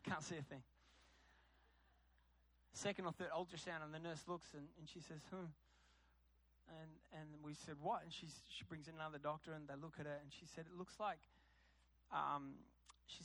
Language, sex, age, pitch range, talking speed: English, male, 20-39, 130-175 Hz, 190 wpm